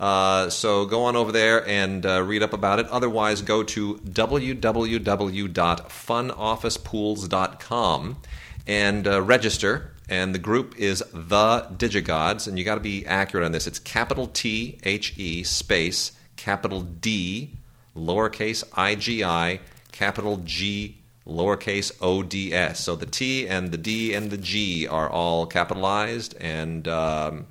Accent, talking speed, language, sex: American, 130 wpm, English, male